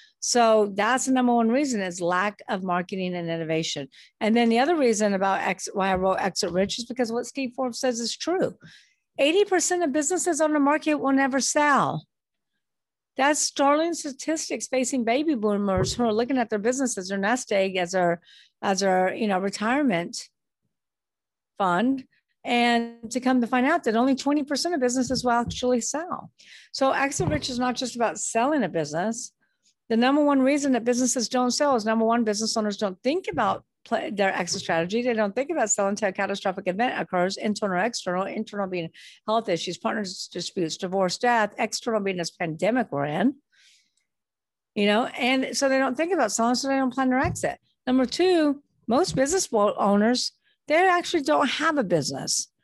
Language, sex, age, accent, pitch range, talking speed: English, female, 50-69, American, 200-270 Hz, 180 wpm